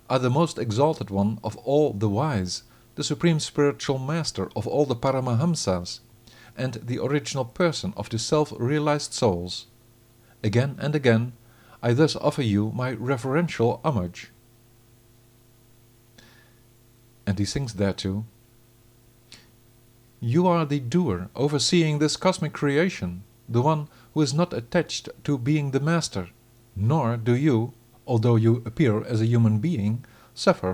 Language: English